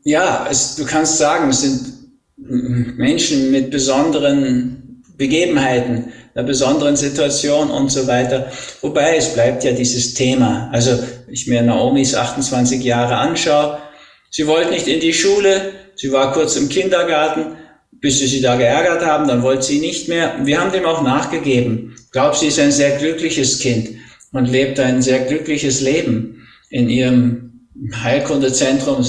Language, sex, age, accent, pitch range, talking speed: German, male, 50-69, German, 125-155 Hz, 155 wpm